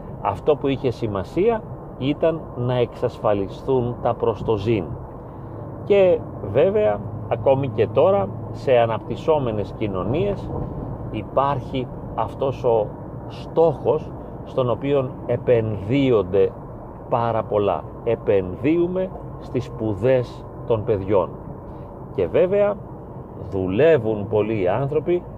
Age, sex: 40-59, male